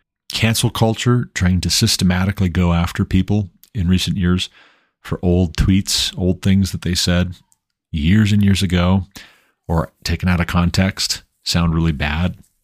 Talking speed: 145 wpm